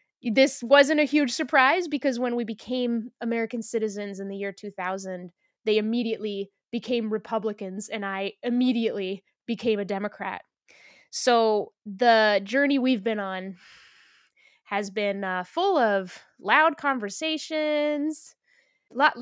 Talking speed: 125 wpm